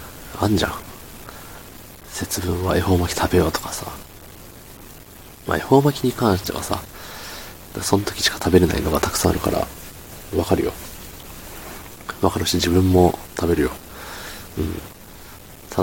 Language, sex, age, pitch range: Japanese, male, 40-59, 85-100 Hz